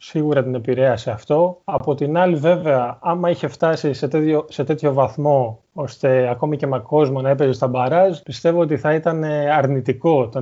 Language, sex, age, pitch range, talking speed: Greek, male, 20-39, 130-170 Hz, 180 wpm